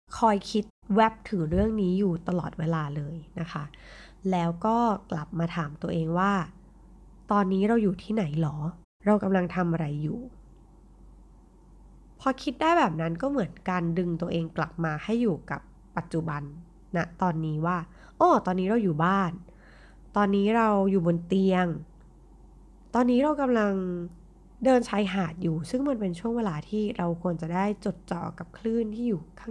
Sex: female